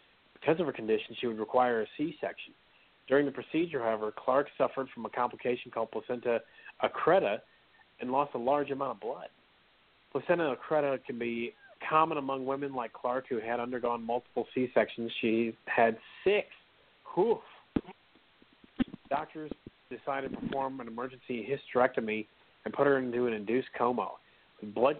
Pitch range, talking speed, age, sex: 115-135 Hz, 150 wpm, 40-59, male